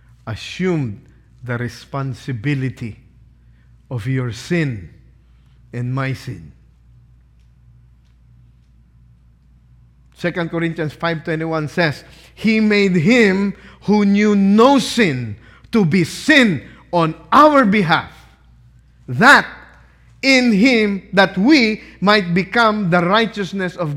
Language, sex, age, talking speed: English, male, 50-69, 90 wpm